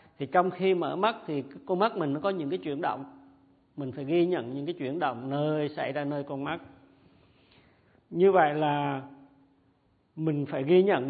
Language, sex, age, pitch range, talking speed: Vietnamese, male, 50-69, 135-165 Hz, 195 wpm